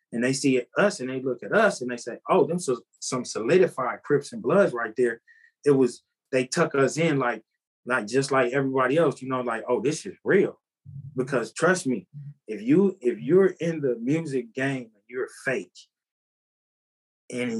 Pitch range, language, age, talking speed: 125-155 Hz, English, 20-39, 190 wpm